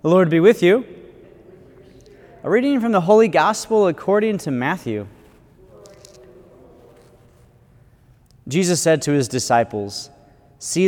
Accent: American